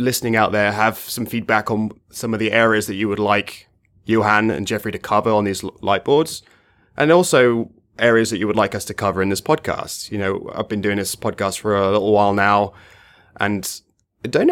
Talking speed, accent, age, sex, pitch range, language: 210 wpm, British, 20-39, male, 100-115 Hz, English